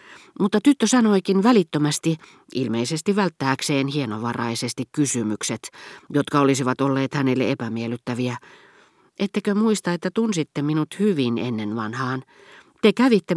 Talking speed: 105 wpm